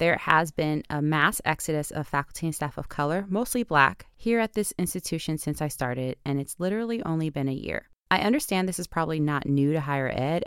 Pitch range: 140-175 Hz